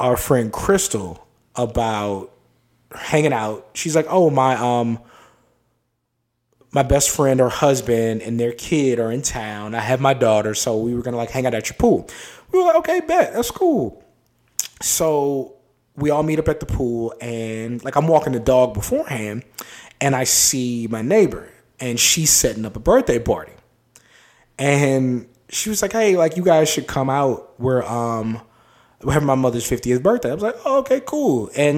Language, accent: English, American